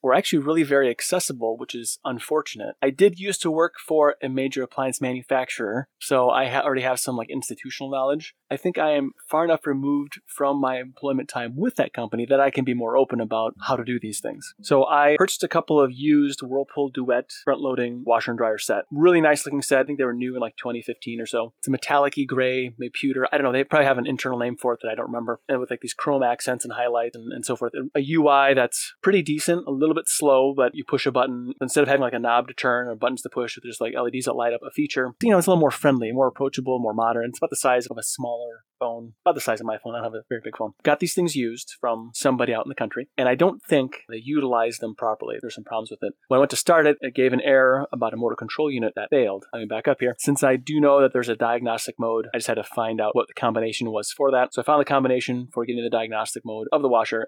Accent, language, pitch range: American, English, 120-140 Hz